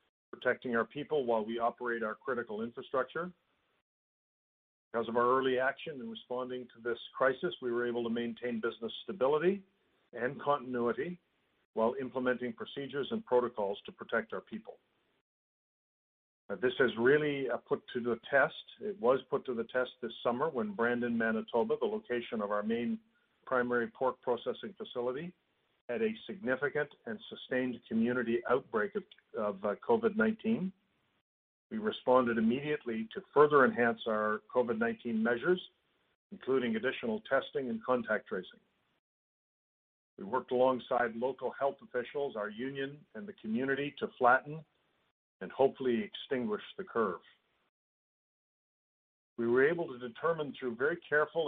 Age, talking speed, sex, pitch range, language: 50-69, 135 wpm, male, 120-170 Hz, English